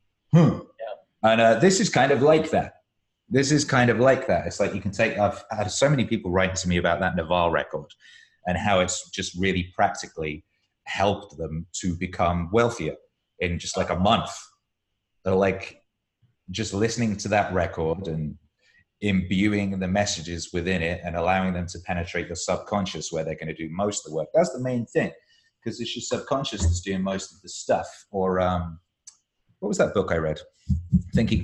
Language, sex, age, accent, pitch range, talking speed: English, male, 30-49, British, 90-110 Hz, 190 wpm